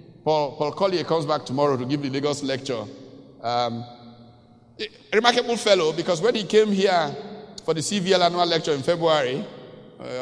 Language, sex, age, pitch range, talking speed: English, male, 60-79, 160-220 Hz, 165 wpm